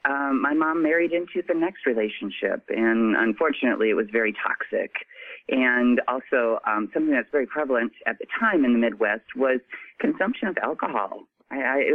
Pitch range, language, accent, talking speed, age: 120-165 Hz, English, American, 170 wpm, 40-59